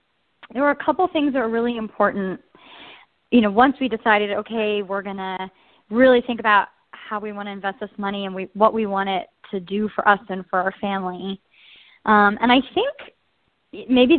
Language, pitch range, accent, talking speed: English, 195-240 Hz, American, 200 wpm